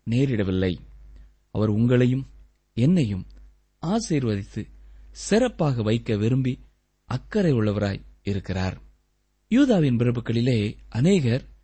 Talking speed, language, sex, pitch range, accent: 70 wpm, Tamil, male, 100-150 Hz, native